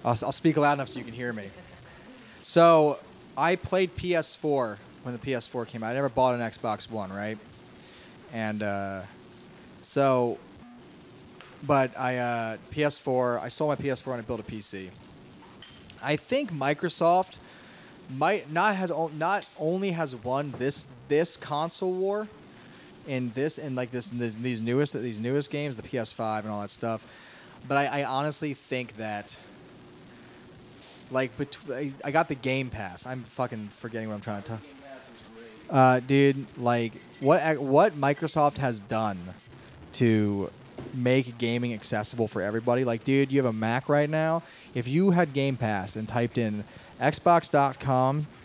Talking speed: 150 wpm